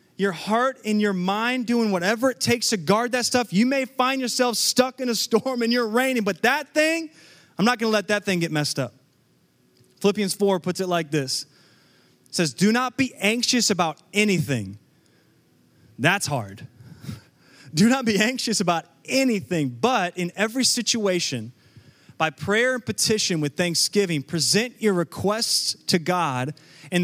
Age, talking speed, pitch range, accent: 30-49, 165 wpm, 150-230 Hz, American